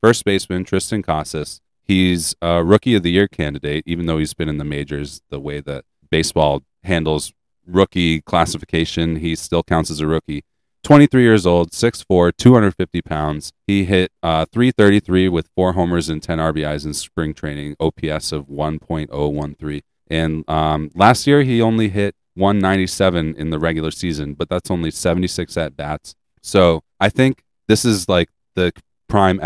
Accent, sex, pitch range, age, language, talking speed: American, male, 75-95 Hz, 30-49, English, 160 wpm